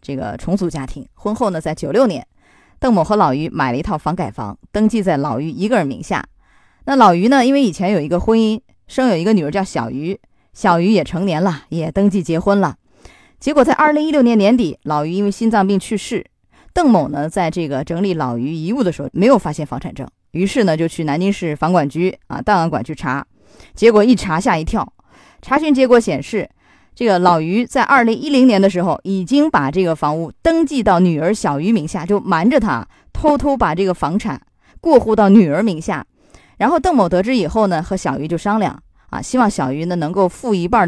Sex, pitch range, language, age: female, 155-225 Hz, Chinese, 20-39